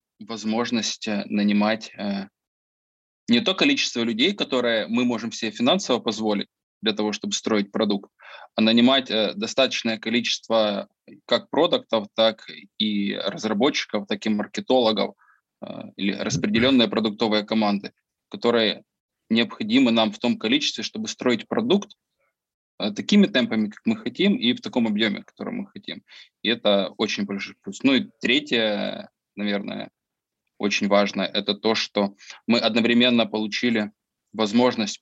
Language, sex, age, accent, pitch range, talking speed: Russian, male, 20-39, native, 105-125 Hz, 130 wpm